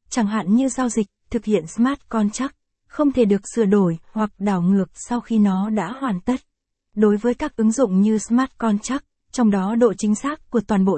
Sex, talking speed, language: female, 215 wpm, Vietnamese